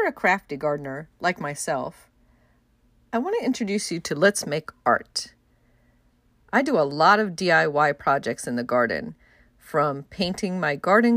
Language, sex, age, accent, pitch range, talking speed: English, female, 40-59, American, 150-230 Hz, 150 wpm